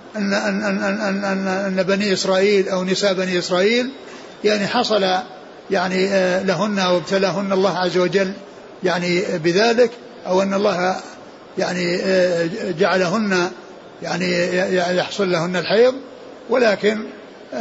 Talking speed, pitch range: 100 wpm, 180-210 Hz